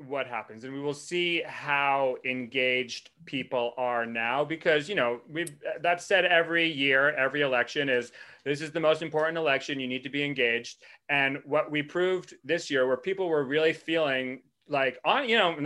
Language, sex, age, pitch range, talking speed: English, male, 30-49, 135-165 Hz, 190 wpm